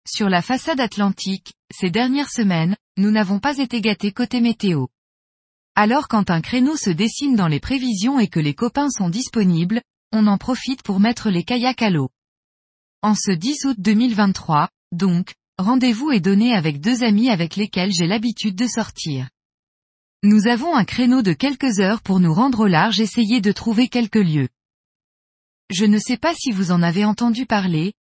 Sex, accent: female, French